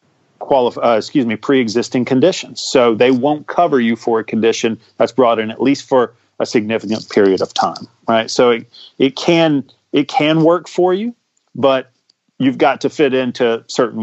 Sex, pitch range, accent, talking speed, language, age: male, 110-135 Hz, American, 180 wpm, English, 40-59